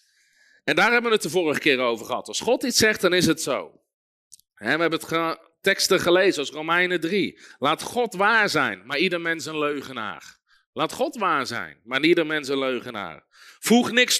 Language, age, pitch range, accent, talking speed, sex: Dutch, 40-59, 165-235 Hz, Dutch, 190 wpm, male